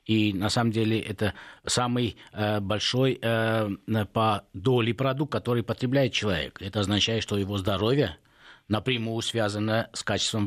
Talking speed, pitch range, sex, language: 125 wpm, 95-115 Hz, male, Russian